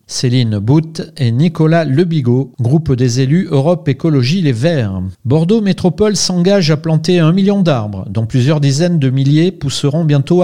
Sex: male